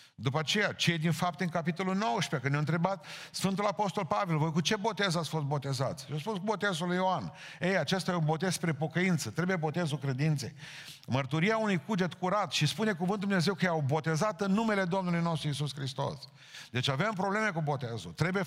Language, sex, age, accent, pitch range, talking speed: Romanian, male, 50-69, native, 140-185 Hz, 200 wpm